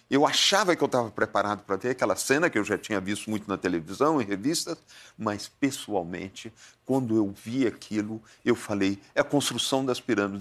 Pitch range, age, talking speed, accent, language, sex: 110-160 Hz, 50-69, 190 wpm, Brazilian, Portuguese, male